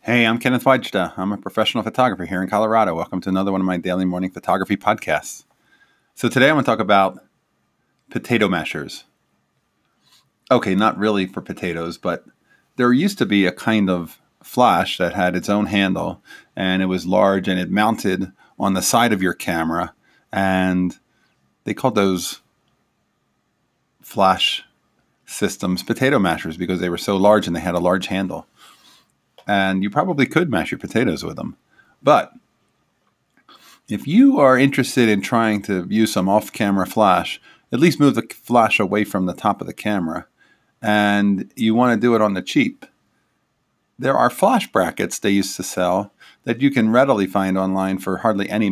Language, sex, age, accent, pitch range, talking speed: English, male, 30-49, American, 95-110 Hz, 170 wpm